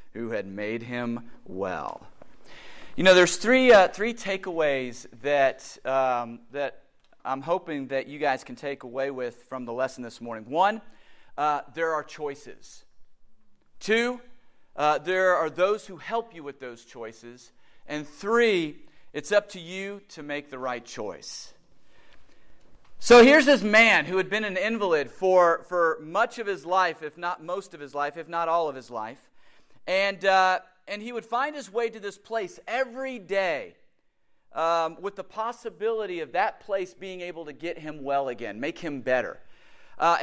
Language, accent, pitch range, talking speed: English, American, 145-205 Hz, 170 wpm